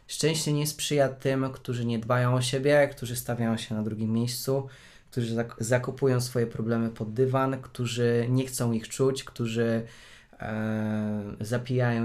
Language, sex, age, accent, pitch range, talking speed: Polish, male, 20-39, native, 115-130 Hz, 140 wpm